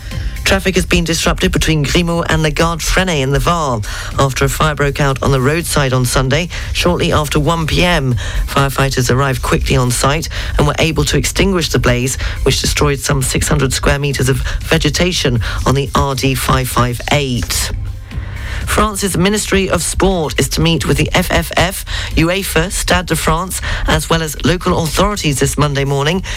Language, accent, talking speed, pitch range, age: English, British, 165 wpm, 125-165 Hz, 40-59